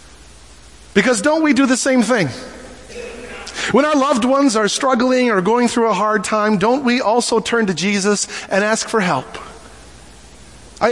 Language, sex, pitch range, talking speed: English, male, 195-265 Hz, 165 wpm